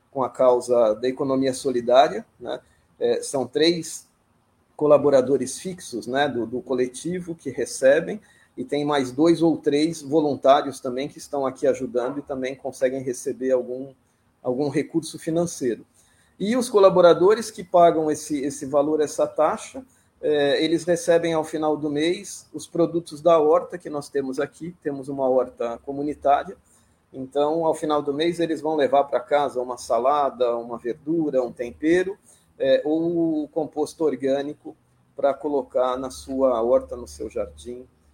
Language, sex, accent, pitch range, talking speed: Portuguese, male, Brazilian, 125-160 Hz, 150 wpm